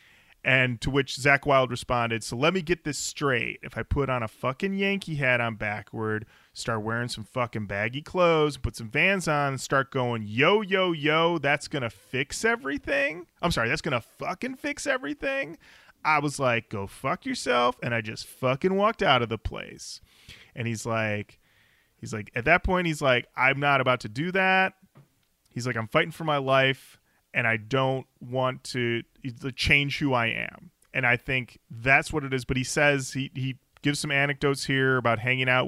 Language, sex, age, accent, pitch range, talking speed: English, male, 30-49, American, 120-155 Hz, 195 wpm